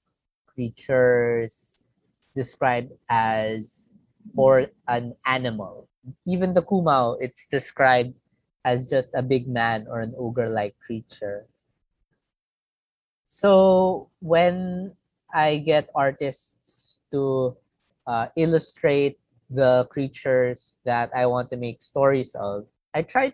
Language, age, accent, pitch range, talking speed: English, 20-39, Filipino, 120-140 Hz, 105 wpm